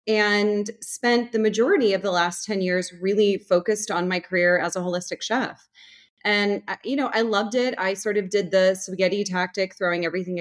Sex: female